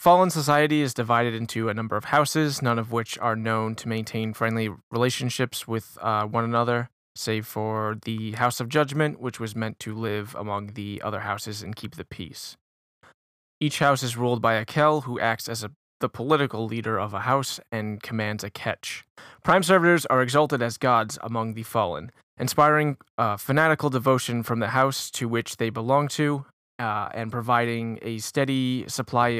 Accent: American